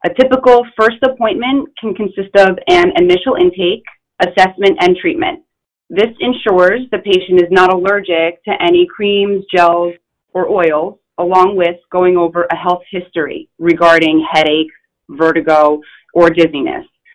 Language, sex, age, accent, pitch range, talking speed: English, female, 30-49, American, 175-265 Hz, 135 wpm